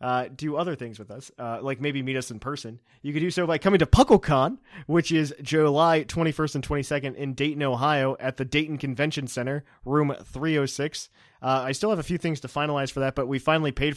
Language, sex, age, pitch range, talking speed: English, male, 20-39, 120-150 Hz, 225 wpm